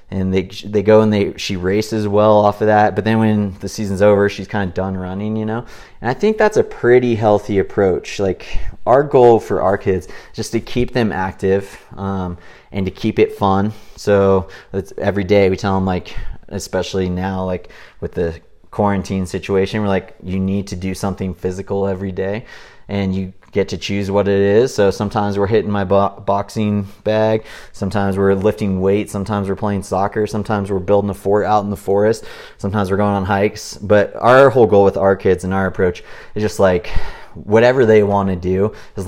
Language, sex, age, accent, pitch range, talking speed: English, male, 30-49, American, 95-105 Hz, 200 wpm